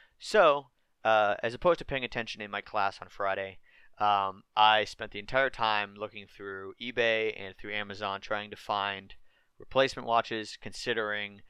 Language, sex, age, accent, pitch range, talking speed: English, male, 30-49, American, 105-125 Hz, 155 wpm